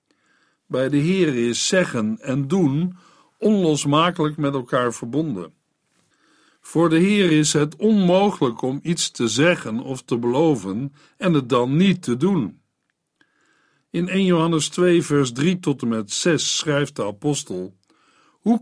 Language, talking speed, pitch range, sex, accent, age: Dutch, 140 wpm, 140-185 Hz, male, Dutch, 60-79